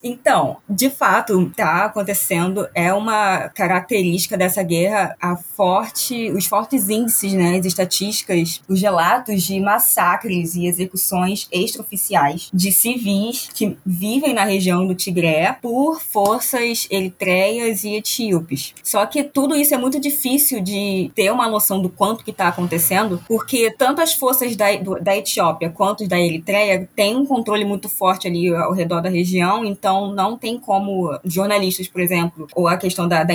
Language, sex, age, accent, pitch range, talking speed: Portuguese, female, 20-39, Brazilian, 180-220 Hz, 155 wpm